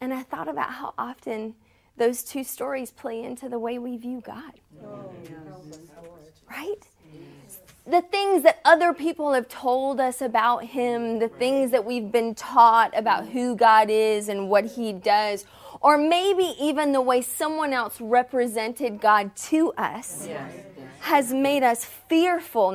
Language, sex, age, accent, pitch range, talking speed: English, female, 30-49, American, 230-300 Hz, 150 wpm